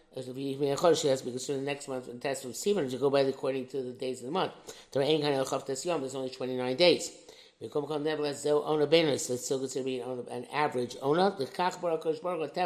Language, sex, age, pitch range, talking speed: English, male, 60-79, 130-155 Hz, 95 wpm